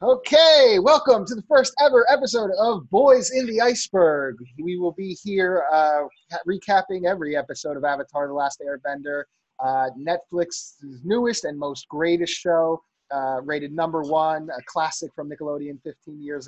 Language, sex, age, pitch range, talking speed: English, male, 30-49, 140-175 Hz, 155 wpm